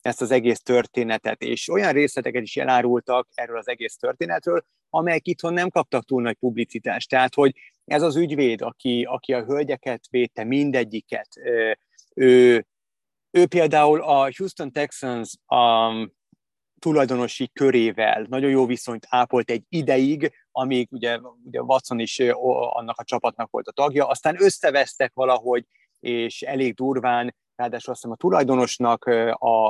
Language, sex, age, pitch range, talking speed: Hungarian, male, 30-49, 120-140 Hz, 140 wpm